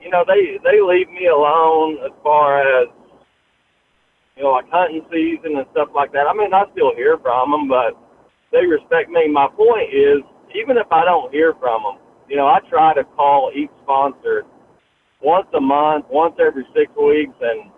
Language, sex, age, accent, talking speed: English, male, 40-59, American, 190 wpm